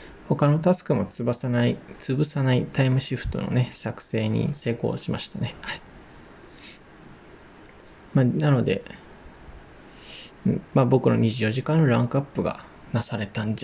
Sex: male